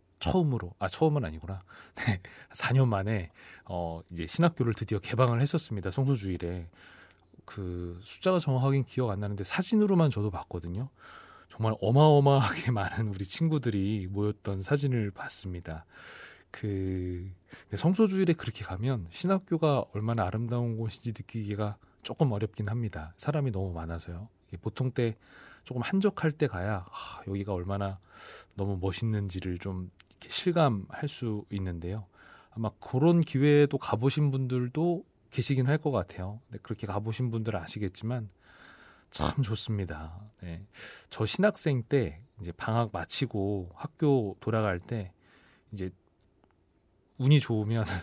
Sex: male